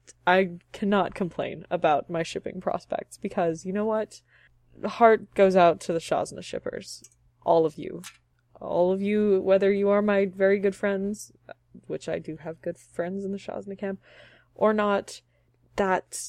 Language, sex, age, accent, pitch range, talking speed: English, female, 20-39, American, 160-200 Hz, 165 wpm